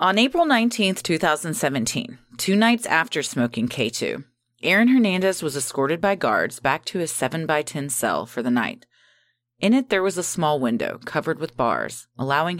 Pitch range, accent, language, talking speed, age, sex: 125-185 Hz, American, English, 160 wpm, 30-49, female